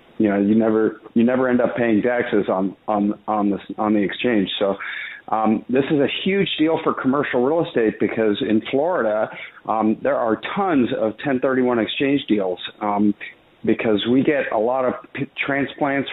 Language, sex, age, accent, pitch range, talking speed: English, male, 50-69, American, 105-120 Hz, 175 wpm